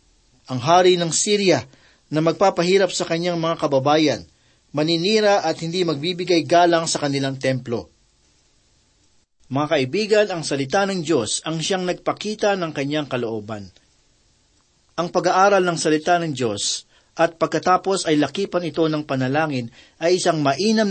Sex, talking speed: male, 130 wpm